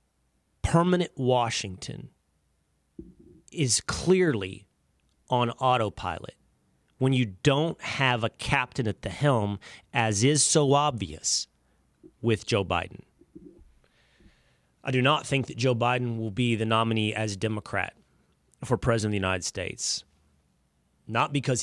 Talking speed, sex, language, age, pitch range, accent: 120 wpm, male, English, 30-49, 85-125 Hz, American